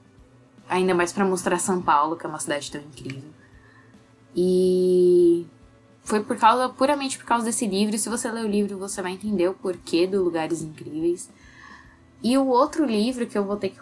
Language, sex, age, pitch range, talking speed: Portuguese, female, 10-29, 165-215 Hz, 185 wpm